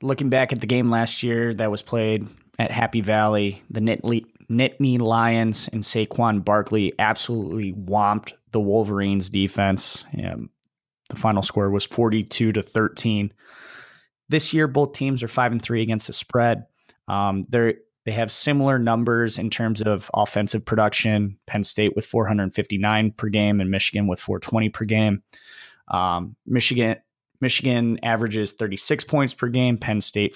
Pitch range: 105-120 Hz